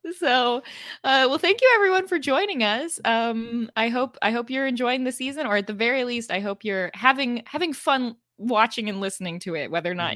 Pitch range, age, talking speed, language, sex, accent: 180-245 Hz, 20-39, 220 wpm, English, female, American